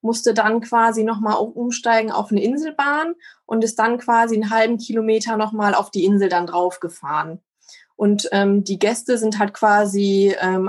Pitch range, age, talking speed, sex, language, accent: 200-225 Hz, 20-39, 175 wpm, female, German, German